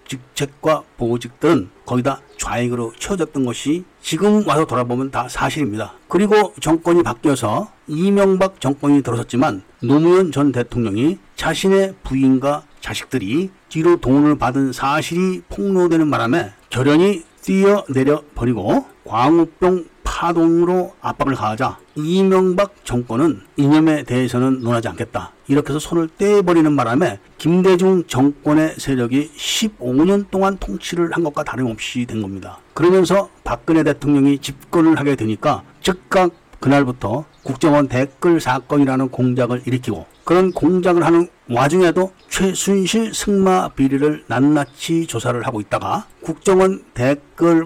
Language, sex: Korean, male